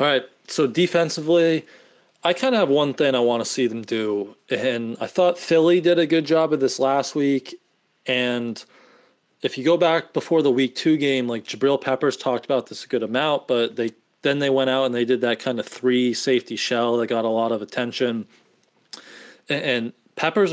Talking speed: 205 wpm